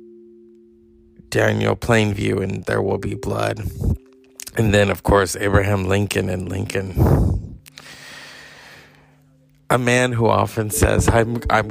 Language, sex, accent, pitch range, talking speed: English, male, American, 95-130 Hz, 115 wpm